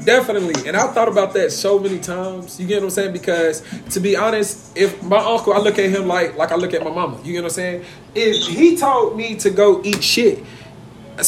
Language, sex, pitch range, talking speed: English, male, 170-235 Hz, 245 wpm